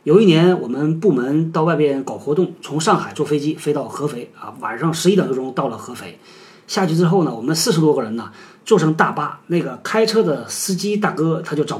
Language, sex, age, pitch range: Chinese, male, 30-49, 145-185 Hz